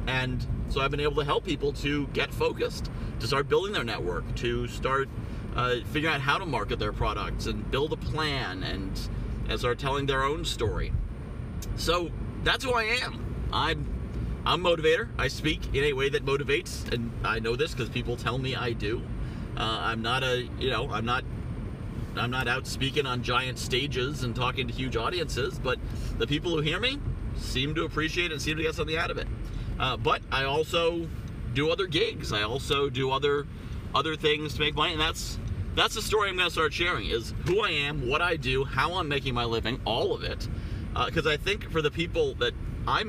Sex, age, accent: male, 40-59, American